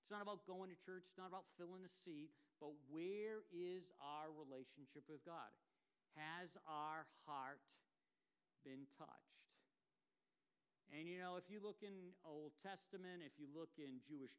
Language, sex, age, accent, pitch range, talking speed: English, male, 50-69, American, 135-165 Hz, 155 wpm